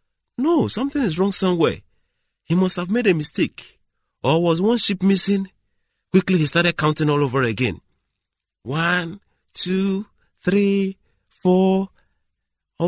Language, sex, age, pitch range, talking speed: English, male, 40-59, 125-185 Hz, 125 wpm